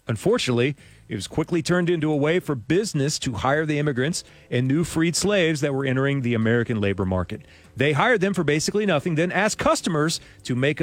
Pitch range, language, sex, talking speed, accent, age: 120-160 Hz, English, male, 200 wpm, American, 40-59